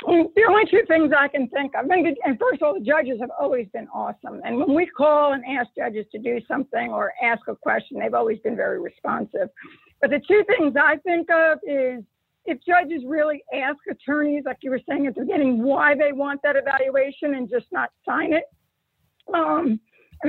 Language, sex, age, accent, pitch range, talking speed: English, female, 50-69, American, 265-335 Hz, 210 wpm